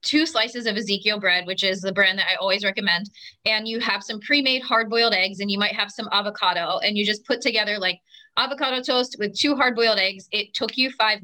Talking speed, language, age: 225 wpm, English, 20-39